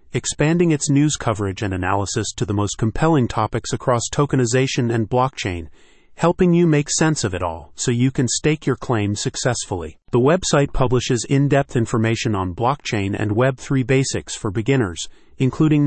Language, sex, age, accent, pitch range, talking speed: English, male, 40-59, American, 105-140 Hz, 160 wpm